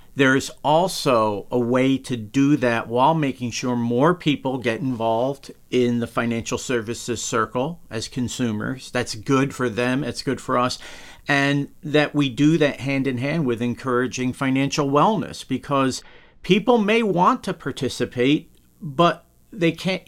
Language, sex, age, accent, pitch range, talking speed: English, male, 50-69, American, 125-160 Hz, 150 wpm